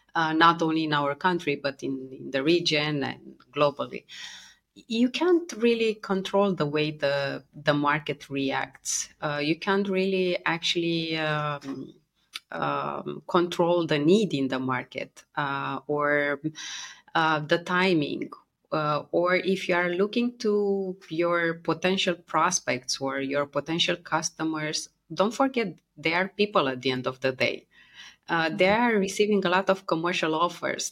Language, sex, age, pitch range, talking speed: English, female, 30-49, 150-190 Hz, 145 wpm